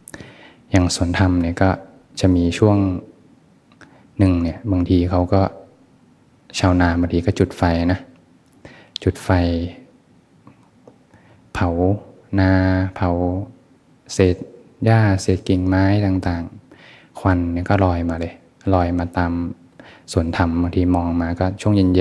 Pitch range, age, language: 85-100 Hz, 20-39, Thai